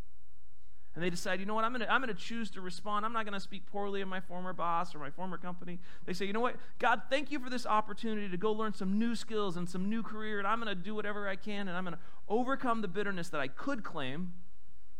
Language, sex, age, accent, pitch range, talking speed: English, male, 40-59, American, 150-210 Hz, 270 wpm